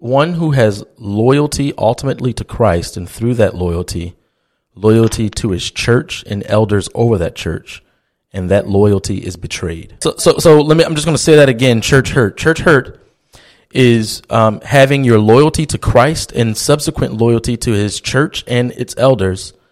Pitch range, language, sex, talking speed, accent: 105-130 Hz, English, male, 175 wpm, American